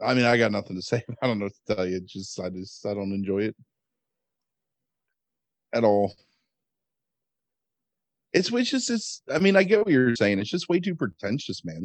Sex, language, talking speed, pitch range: male, English, 210 wpm, 105-135 Hz